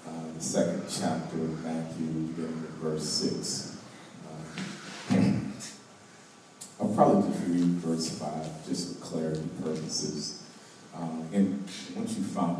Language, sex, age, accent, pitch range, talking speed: English, male, 40-59, American, 80-90 Hz, 110 wpm